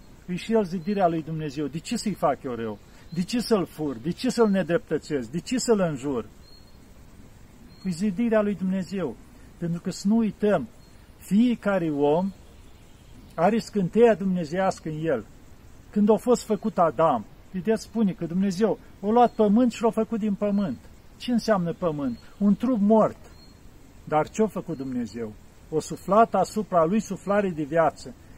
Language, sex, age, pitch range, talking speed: Romanian, male, 50-69, 165-225 Hz, 160 wpm